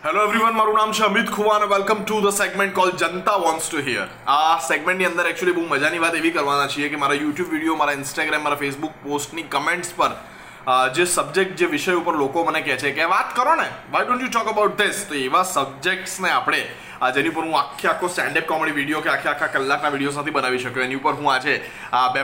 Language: Gujarati